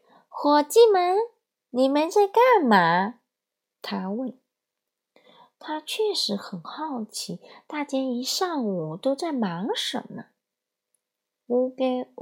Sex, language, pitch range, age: female, Chinese, 200-295 Hz, 20-39